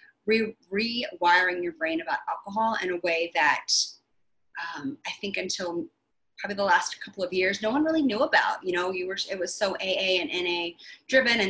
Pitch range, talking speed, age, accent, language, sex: 175-225 Hz, 190 wpm, 30-49, American, English, female